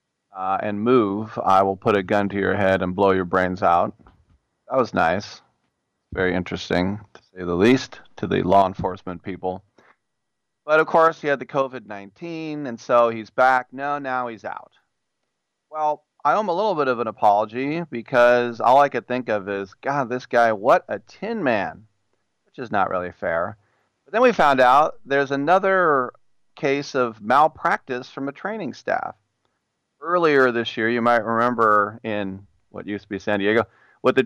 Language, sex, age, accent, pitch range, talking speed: English, male, 40-59, American, 100-130 Hz, 180 wpm